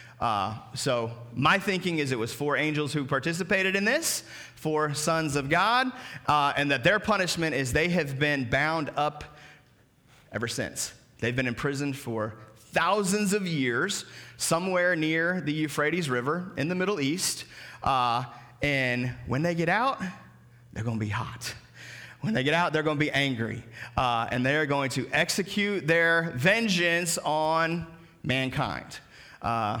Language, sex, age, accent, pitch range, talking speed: English, male, 30-49, American, 115-155 Hz, 155 wpm